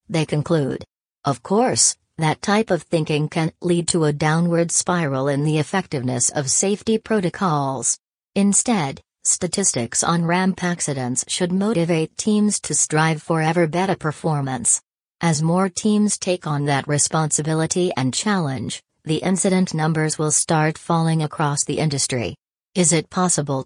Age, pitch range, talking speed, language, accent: 40-59, 150-180 Hz, 140 wpm, English, American